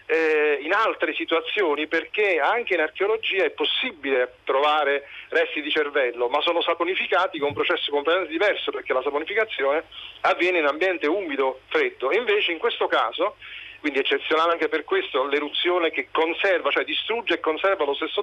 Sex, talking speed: male, 150 wpm